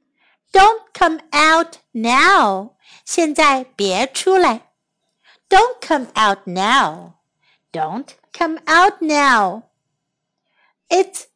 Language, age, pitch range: Chinese, 60-79, 260-395 Hz